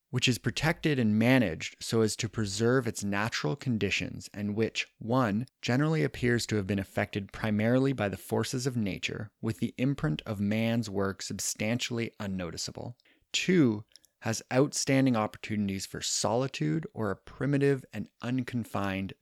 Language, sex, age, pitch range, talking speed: English, male, 30-49, 100-130 Hz, 145 wpm